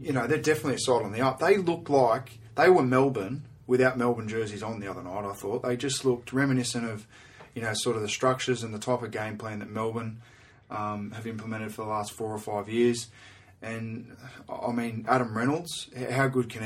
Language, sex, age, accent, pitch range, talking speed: English, male, 20-39, Australian, 110-130 Hz, 220 wpm